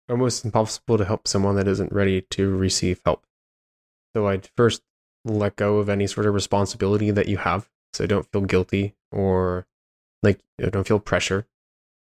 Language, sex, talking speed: English, male, 165 wpm